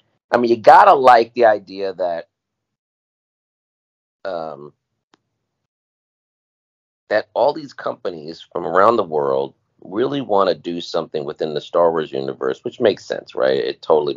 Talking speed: 140 wpm